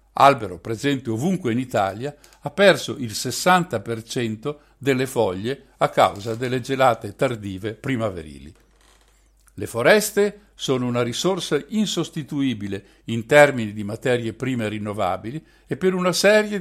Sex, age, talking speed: male, 60-79, 120 wpm